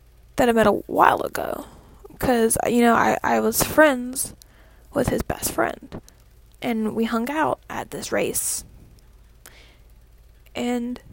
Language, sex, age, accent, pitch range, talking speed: English, female, 10-29, American, 225-280 Hz, 135 wpm